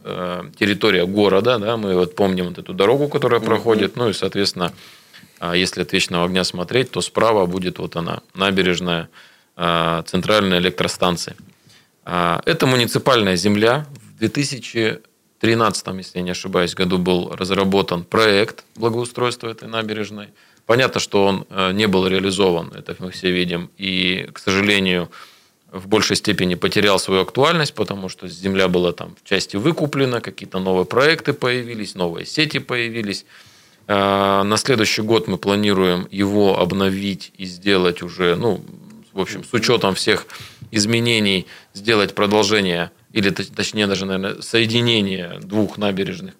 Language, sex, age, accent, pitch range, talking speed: Russian, male, 20-39, native, 90-115 Hz, 130 wpm